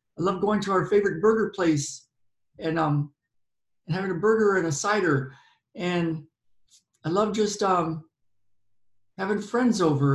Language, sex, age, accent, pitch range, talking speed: English, male, 50-69, American, 150-215 Hz, 150 wpm